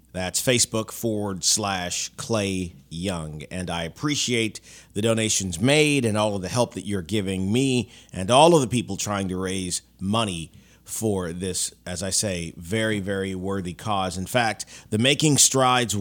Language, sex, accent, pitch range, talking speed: English, male, American, 95-115 Hz, 165 wpm